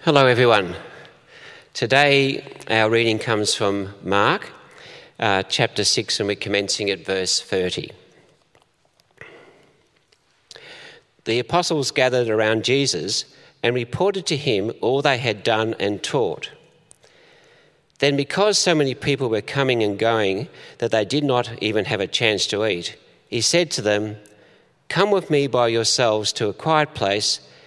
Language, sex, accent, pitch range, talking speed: English, male, Australian, 105-145 Hz, 140 wpm